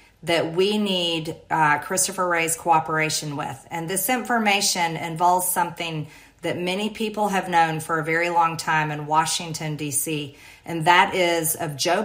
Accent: American